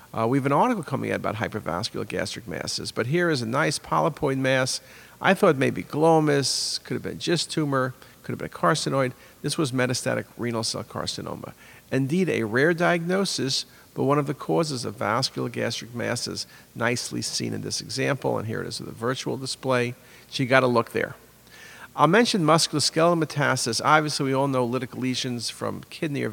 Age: 50-69